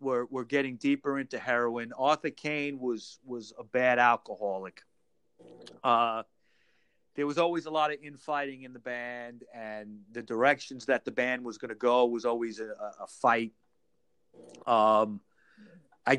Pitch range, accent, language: 130-170 Hz, American, English